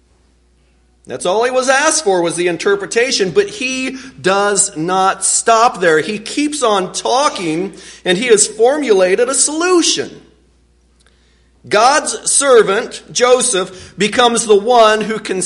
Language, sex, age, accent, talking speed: English, male, 40-59, American, 130 wpm